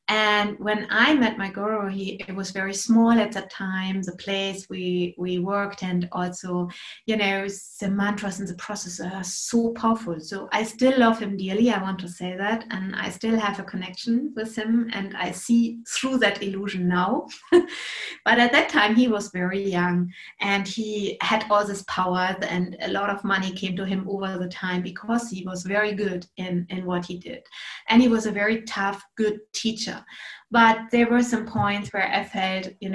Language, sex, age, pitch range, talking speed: English, female, 30-49, 190-225 Hz, 200 wpm